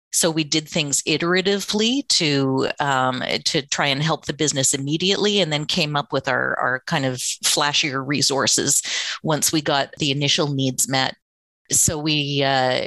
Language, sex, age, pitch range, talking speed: English, female, 40-59, 140-160 Hz, 165 wpm